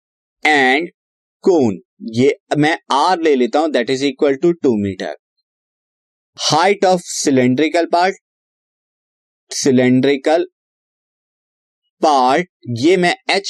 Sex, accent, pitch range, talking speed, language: male, native, 135-185 Hz, 100 wpm, Hindi